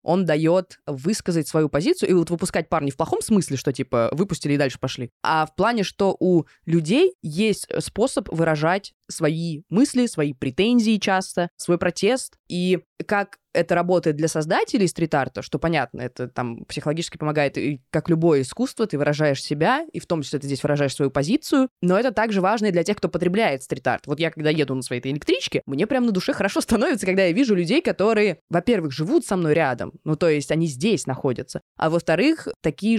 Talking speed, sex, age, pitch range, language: 190 wpm, female, 20-39, 155-205 Hz, Russian